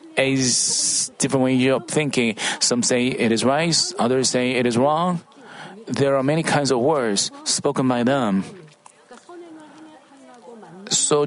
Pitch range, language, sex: 135-205 Hz, Korean, male